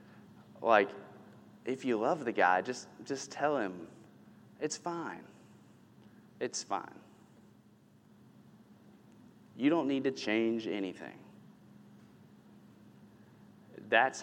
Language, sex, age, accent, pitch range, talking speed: English, male, 30-49, American, 105-130 Hz, 90 wpm